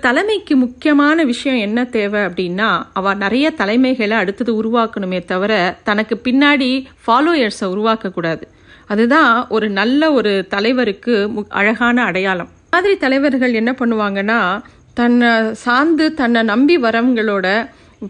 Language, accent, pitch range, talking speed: Tamil, native, 215-275 Hz, 100 wpm